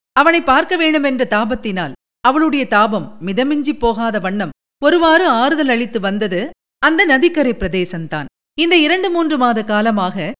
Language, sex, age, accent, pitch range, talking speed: Tamil, female, 50-69, native, 200-295 Hz, 120 wpm